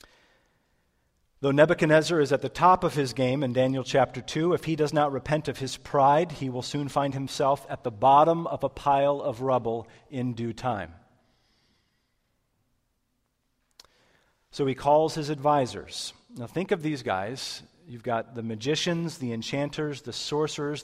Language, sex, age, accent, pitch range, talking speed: English, male, 40-59, American, 115-145 Hz, 160 wpm